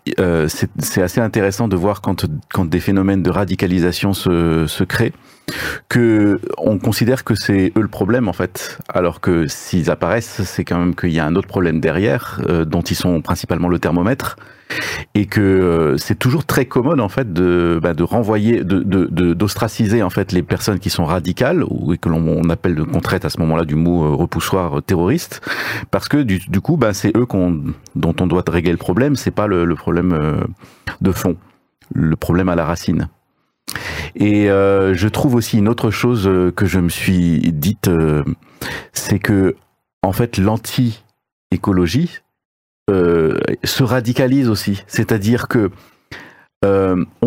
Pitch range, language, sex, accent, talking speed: 90-115 Hz, French, male, French, 185 wpm